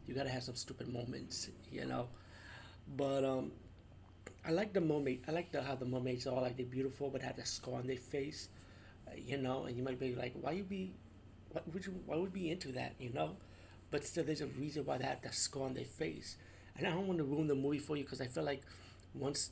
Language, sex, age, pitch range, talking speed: English, male, 30-49, 105-140 Hz, 250 wpm